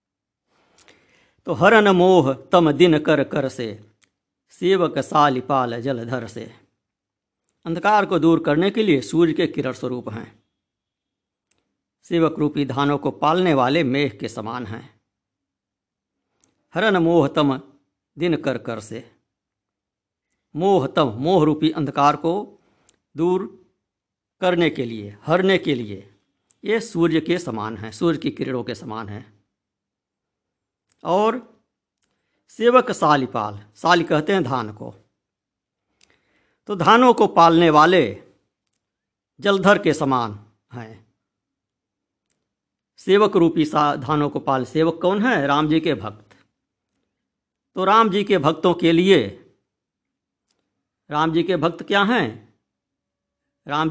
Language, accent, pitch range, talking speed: Hindi, native, 115-180 Hz, 120 wpm